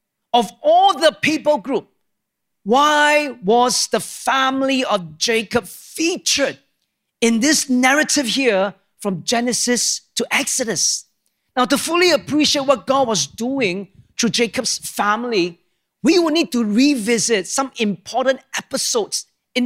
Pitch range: 205-265 Hz